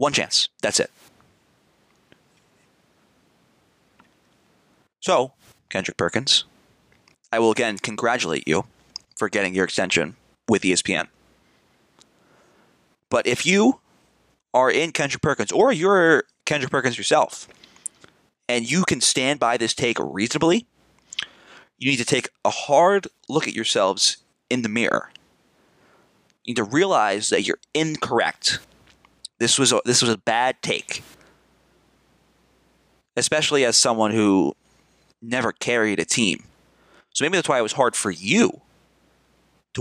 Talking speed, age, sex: 125 wpm, 30-49, male